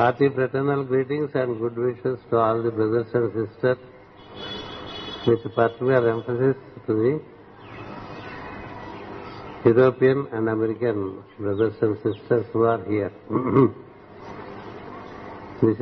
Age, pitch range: 60-79, 105-120 Hz